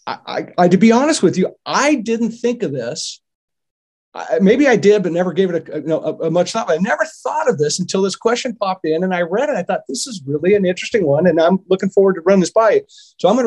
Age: 50-69